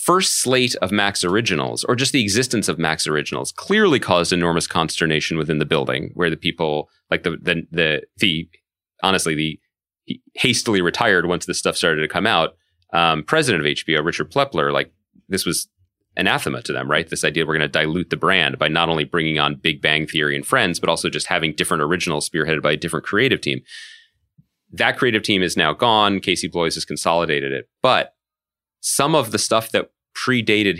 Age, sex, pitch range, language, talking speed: 30-49, male, 75-100 Hz, English, 195 wpm